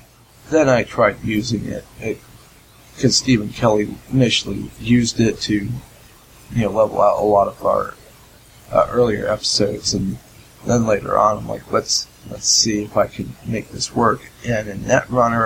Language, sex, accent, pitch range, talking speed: English, male, American, 105-125 Hz, 165 wpm